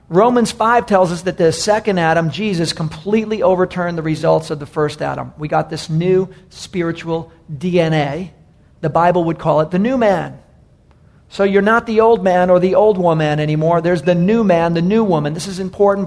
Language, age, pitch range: English, 40-59, 155-185 Hz